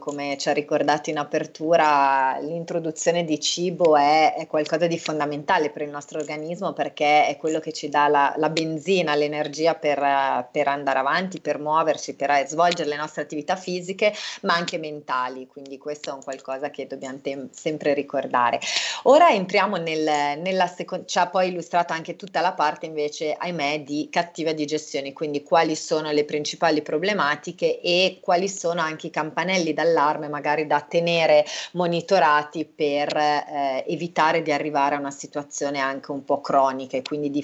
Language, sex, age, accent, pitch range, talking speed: Italian, female, 30-49, native, 145-170 Hz, 160 wpm